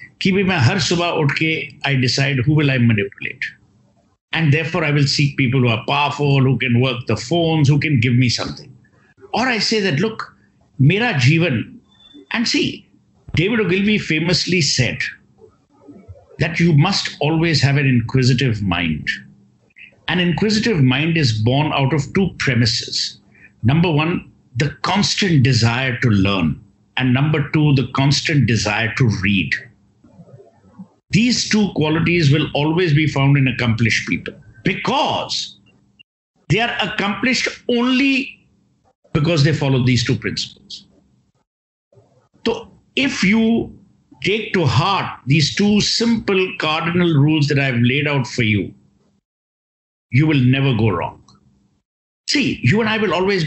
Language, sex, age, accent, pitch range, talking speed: English, male, 60-79, Indian, 130-175 Hz, 135 wpm